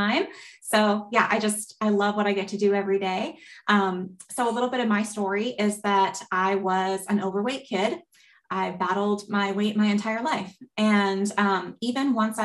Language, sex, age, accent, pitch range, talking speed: English, female, 20-39, American, 195-220 Hz, 190 wpm